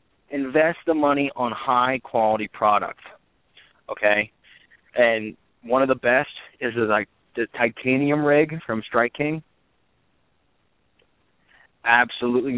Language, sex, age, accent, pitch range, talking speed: English, male, 30-49, American, 115-140 Hz, 110 wpm